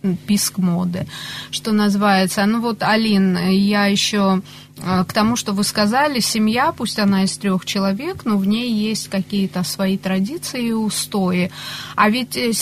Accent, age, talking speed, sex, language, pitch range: native, 30-49, 150 wpm, female, Russian, 185-215 Hz